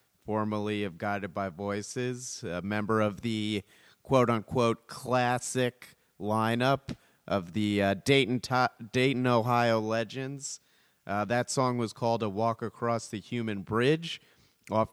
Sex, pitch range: male, 95-115 Hz